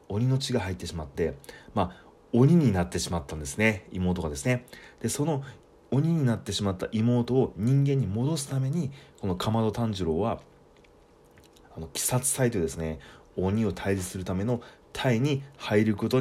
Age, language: 30-49, Japanese